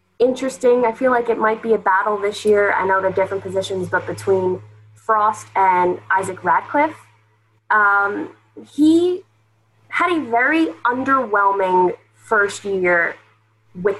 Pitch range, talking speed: 180-230 Hz, 135 wpm